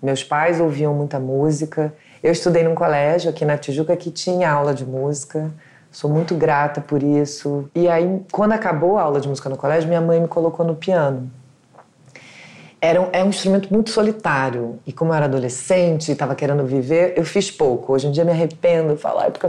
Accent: Brazilian